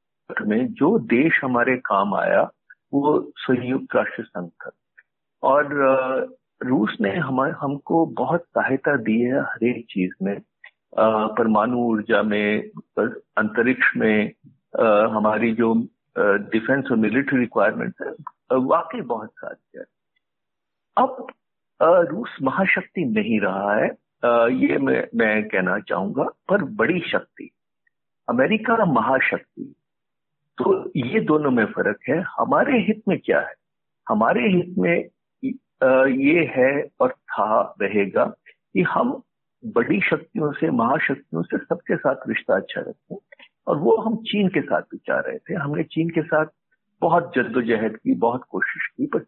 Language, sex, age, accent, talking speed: Hindi, male, 50-69, native, 130 wpm